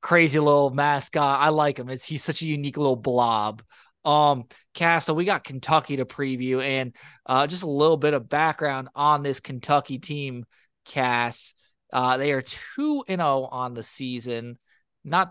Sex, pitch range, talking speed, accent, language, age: male, 130-155 Hz, 175 wpm, American, English, 20-39